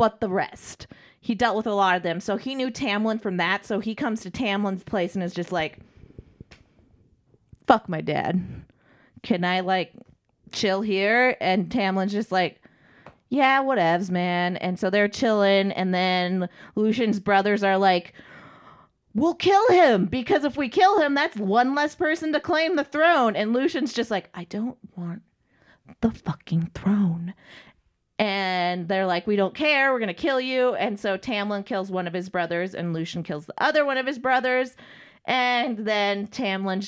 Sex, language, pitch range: female, English, 180-245 Hz